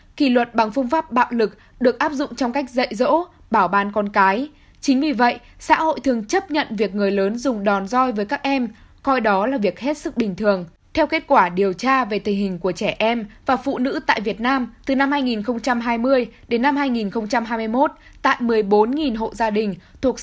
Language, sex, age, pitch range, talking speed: Vietnamese, female, 10-29, 215-275 Hz, 215 wpm